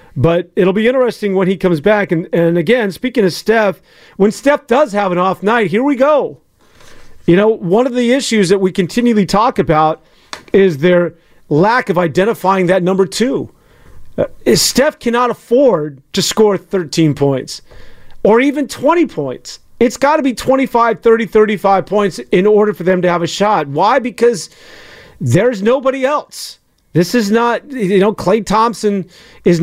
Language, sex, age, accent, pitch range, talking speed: English, male, 40-59, American, 180-230 Hz, 170 wpm